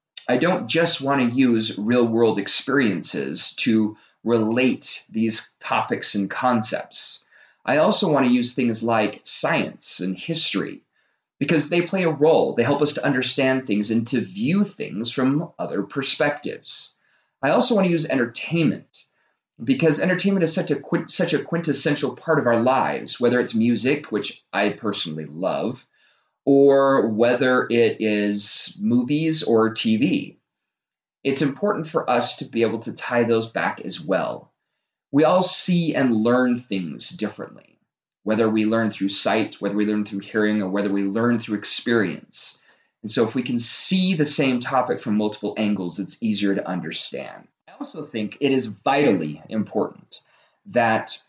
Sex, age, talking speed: male, 30-49, 155 wpm